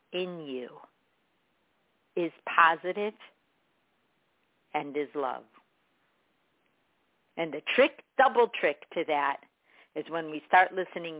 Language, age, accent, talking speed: English, 50-69, American, 100 wpm